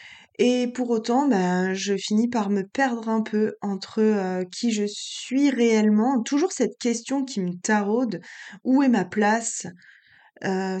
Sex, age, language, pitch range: female, 20-39, French, 205-260 Hz